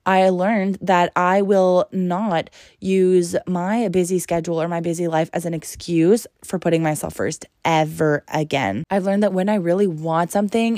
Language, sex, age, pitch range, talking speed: English, female, 20-39, 160-185 Hz, 175 wpm